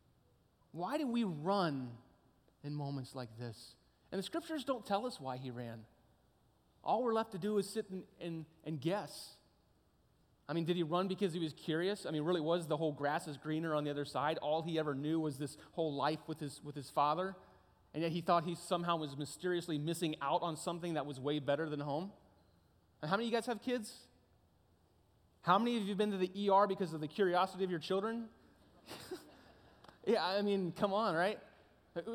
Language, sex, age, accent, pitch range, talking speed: English, male, 30-49, American, 145-190 Hz, 210 wpm